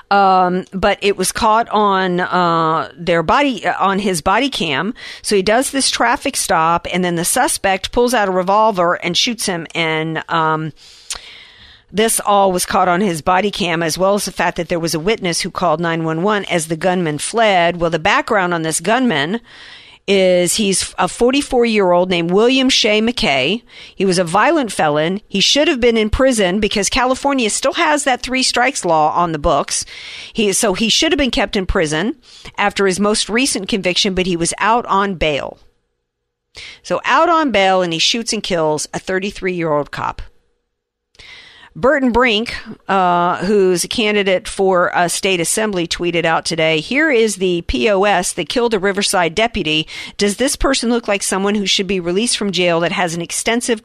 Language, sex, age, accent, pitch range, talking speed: English, female, 50-69, American, 170-220 Hz, 185 wpm